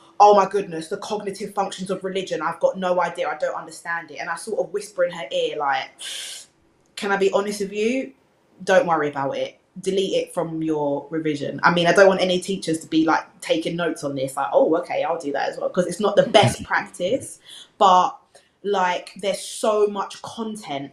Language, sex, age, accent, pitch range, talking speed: English, female, 20-39, British, 170-205 Hz, 210 wpm